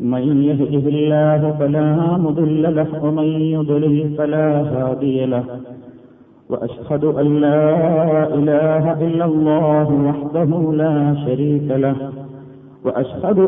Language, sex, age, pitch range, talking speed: Malayalam, male, 50-69, 145-155 Hz, 100 wpm